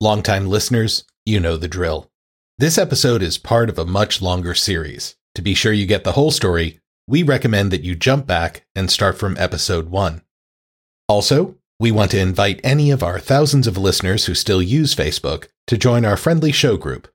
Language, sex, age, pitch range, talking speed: English, male, 40-59, 85-115 Hz, 195 wpm